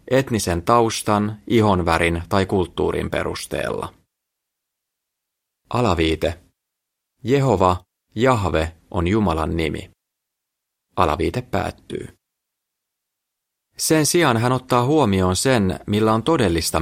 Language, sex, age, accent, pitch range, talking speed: Finnish, male, 30-49, native, 90-120 Hz, 80 wpm